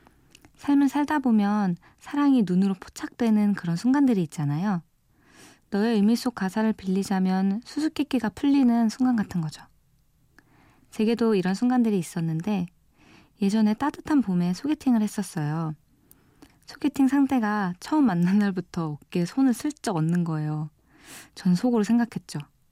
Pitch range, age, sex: 170-235 Hz, 20-39, female